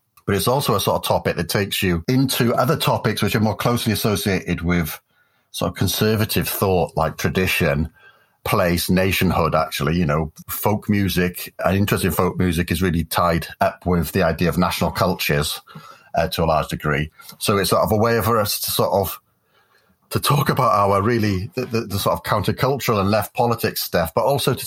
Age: 40-59